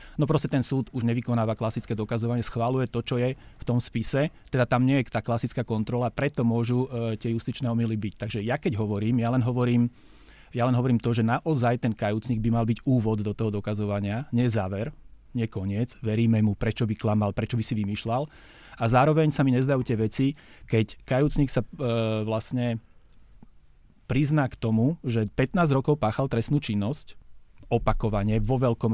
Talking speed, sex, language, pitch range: 180 wpm, male, Slovak, 110-125 Hz